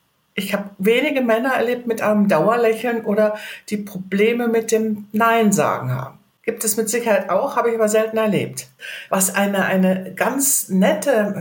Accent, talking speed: German, 160 wpm